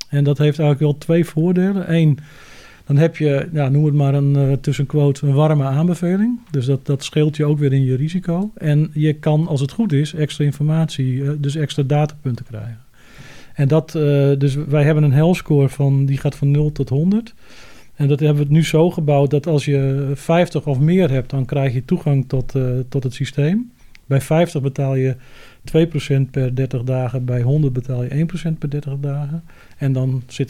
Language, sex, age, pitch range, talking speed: Dutch, male, 40-59, 135-155 Hz, 200 wpm